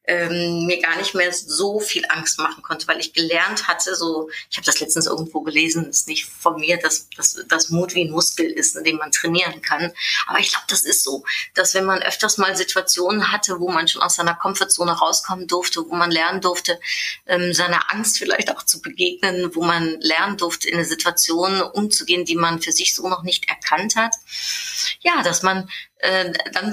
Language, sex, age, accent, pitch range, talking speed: German, female, 30-49, German, 165-195 Hz, 200 wpm